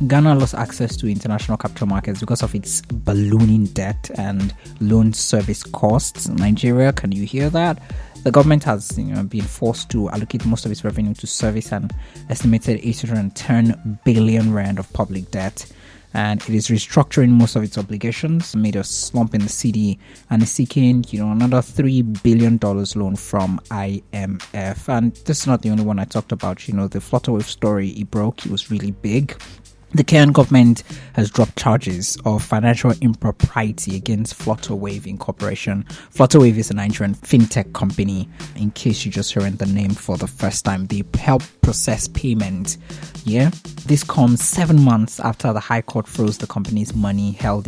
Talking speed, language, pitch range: 165 wpm, English, 100-125 Hz